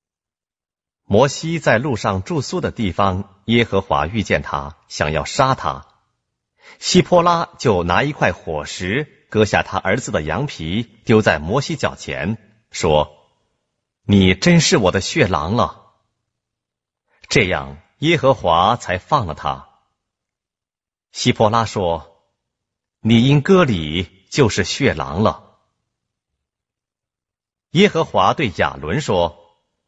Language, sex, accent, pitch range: Korean, male, Chinese, 85-120 Hz